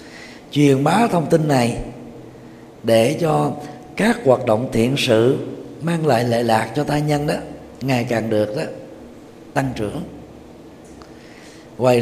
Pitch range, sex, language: 115-160 Hz, male, Vietnamese